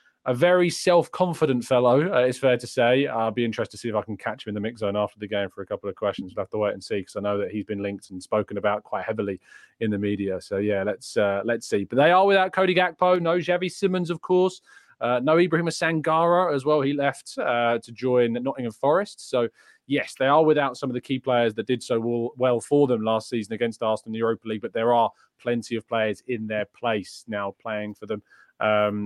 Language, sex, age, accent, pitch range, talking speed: English, male, 20-39, British, 110-155 Hz, 250 wpm